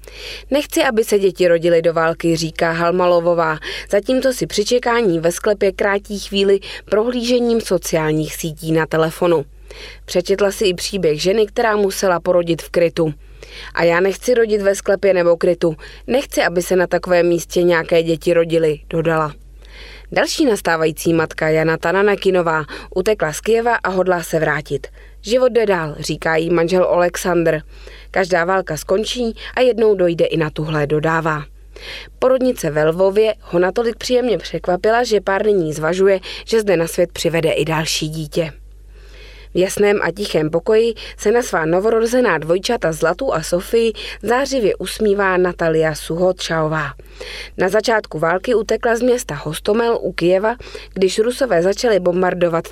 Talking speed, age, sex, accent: 145 wpm, 20-39, female, native